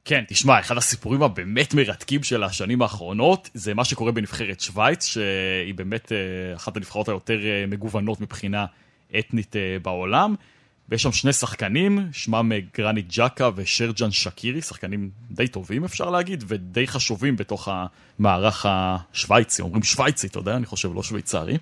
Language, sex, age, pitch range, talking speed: Hebrew, male, 20-39, 105-135 Hz, 140 wpm